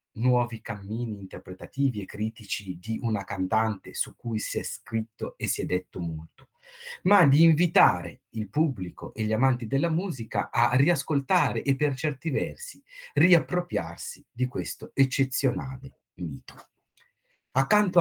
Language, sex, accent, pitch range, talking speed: Italian, male, native, 95-135 Hz, 135 wpm